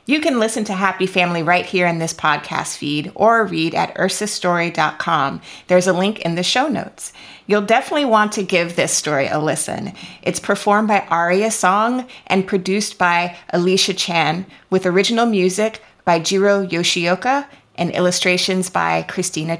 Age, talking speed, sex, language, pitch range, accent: 30-49, 160 wpm, female, English, 180-220 Hz, American